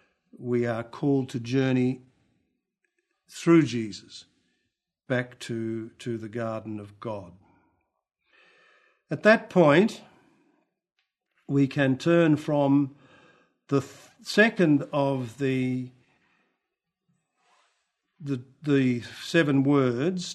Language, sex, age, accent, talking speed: English, male, 60-79, Australian, 90 wpm